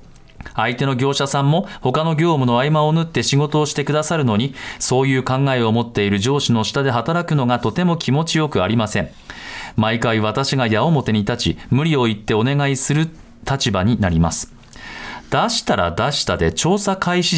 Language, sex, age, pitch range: Japanese, male, 40-59, 115-155 Hz